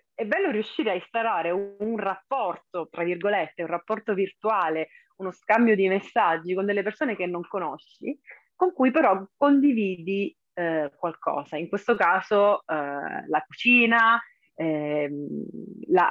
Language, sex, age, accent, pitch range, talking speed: Italian, female, 30-49, native, 170-215 Hz, 130 wpm